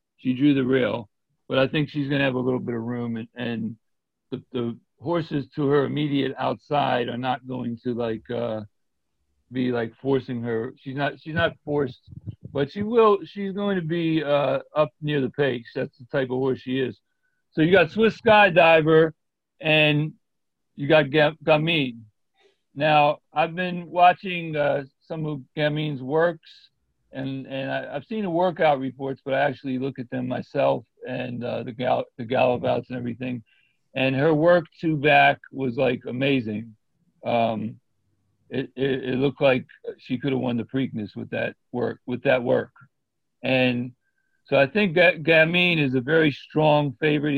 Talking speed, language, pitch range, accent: 170 wpm, English, 125-155 Hz, American